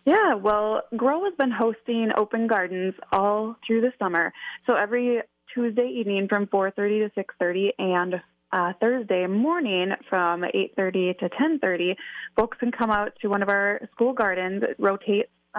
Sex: female